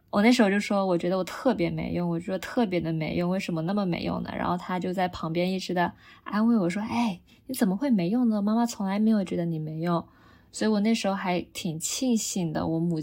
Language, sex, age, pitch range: Chinese, female, 20-39, 175-220 Hz